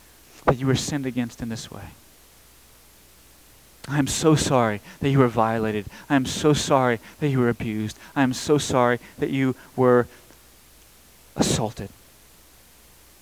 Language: English